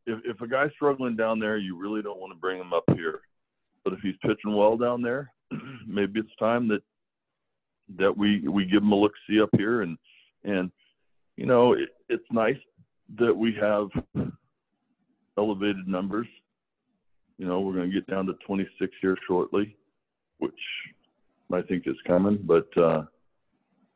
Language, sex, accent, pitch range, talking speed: English, male, American, 90-105 Hz, 170 wpm